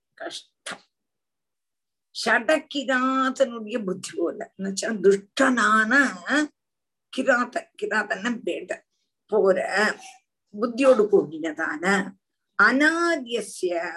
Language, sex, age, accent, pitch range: Tamil, female, 50-69, native, 190-275 Hz